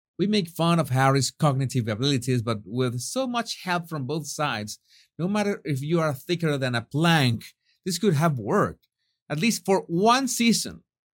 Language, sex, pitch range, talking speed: English, male, 125-175 Hz, 180 wpm